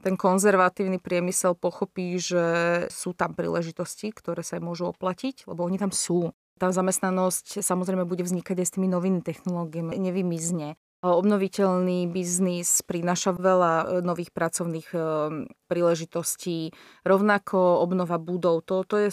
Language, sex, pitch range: Slovak, female, 175-195 Hz